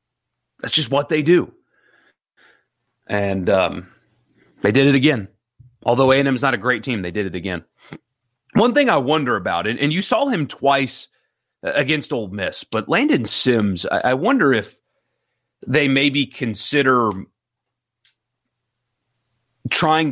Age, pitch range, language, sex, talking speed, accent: 30-49, 115-140 Hz, English, male, 145 wpm, American